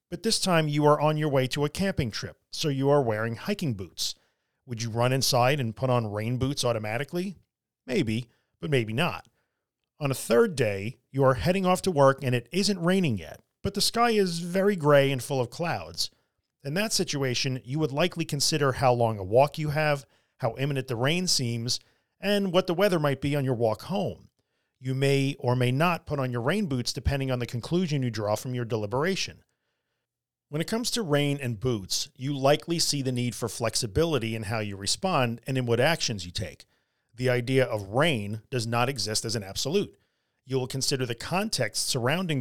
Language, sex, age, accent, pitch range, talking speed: English, male, 40-59, American, 120-160 Hz, 205 wpm